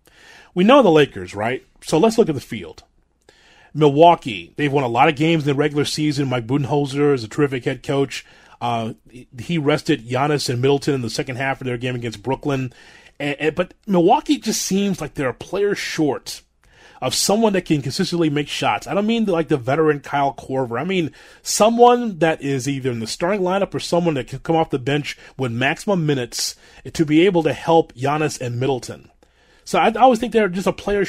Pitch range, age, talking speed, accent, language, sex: 140-195 Hz, 30-49, 205 wpm, American, English, male